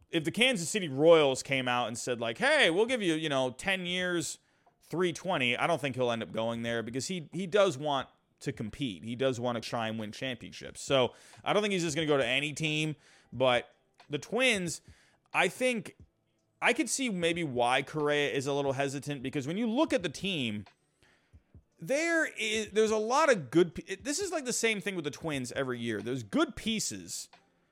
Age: 30-49